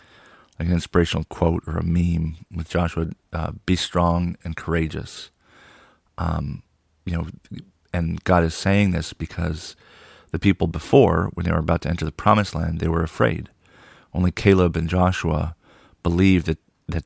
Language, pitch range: English, 80-95 Hz